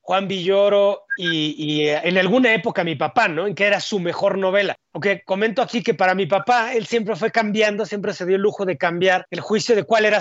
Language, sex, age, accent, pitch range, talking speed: Spanish, male, 30-49, Mexican, 185-225 Hz, 230 wpm